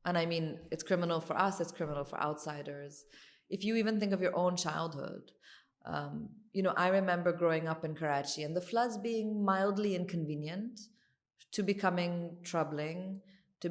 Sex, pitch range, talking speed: female, 160-200 Hz, 165 wpm